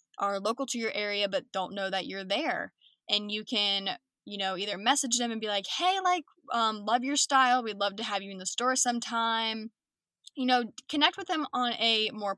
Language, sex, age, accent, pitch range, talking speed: English, female, 10-29, American, 195-250 Hz, 220 wpm